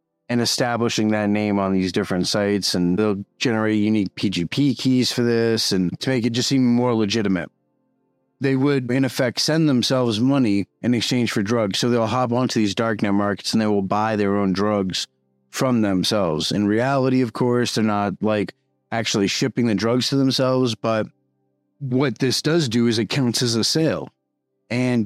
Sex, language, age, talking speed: male, English, 30-49, 180 wpm